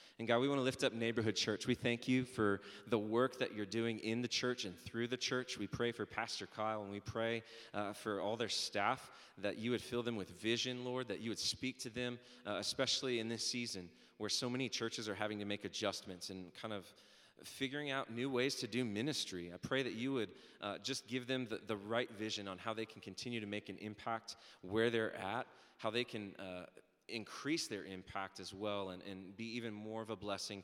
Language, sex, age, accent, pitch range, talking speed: English, male, 20-39, American, 100-120 Hz, 230 wpm